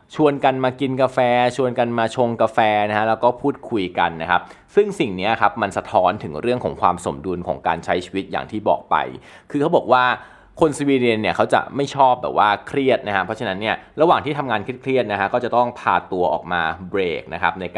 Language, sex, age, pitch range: Thai, male, 20-39, 100-130 Hz